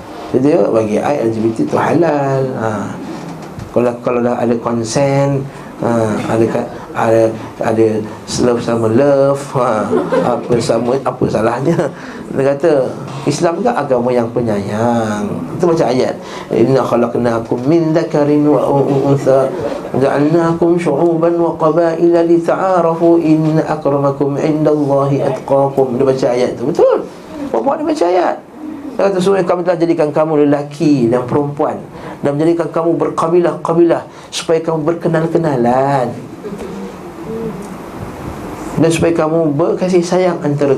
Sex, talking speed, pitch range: male, 120 wpm, 120-165 Hz